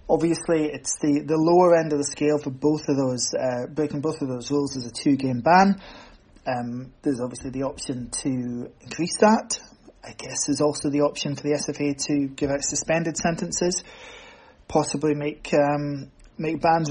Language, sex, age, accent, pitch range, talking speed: English, male, 20-39, British, 140-165 Hz, 180 wpm